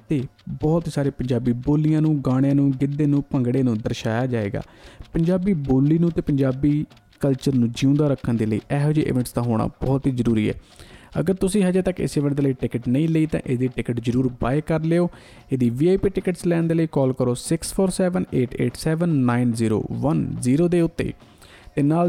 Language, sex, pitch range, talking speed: Punjabi, male, 125-160 Hz, 160 wpm